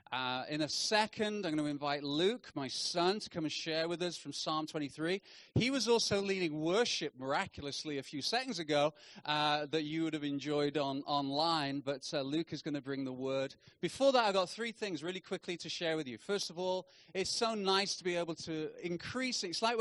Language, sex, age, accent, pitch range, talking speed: English, male, 30-49, British, 150-195 Hz, 220 wpm